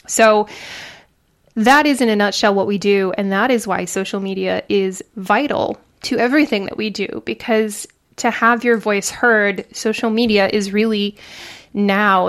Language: English